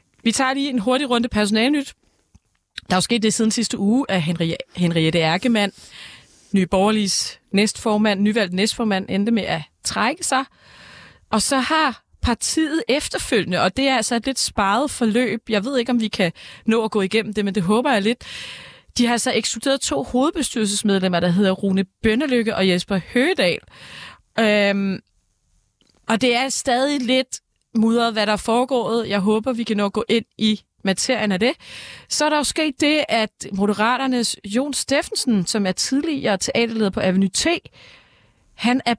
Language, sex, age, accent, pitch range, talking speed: Danish, female, 30-49, native, 200-250 Hz, 170 wpm